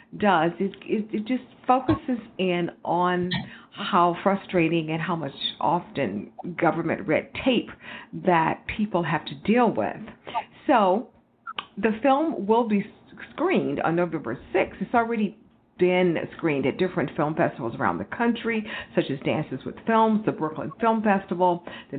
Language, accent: English, American